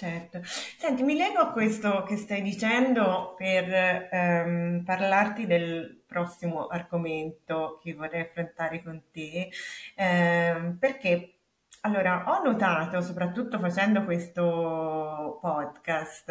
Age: 30-49